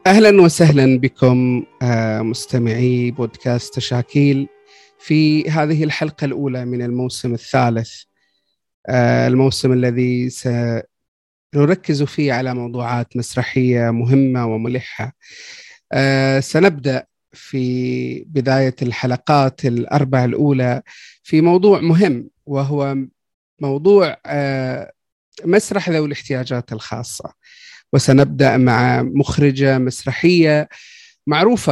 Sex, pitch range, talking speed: male, 125-155 Hz, 80 wpm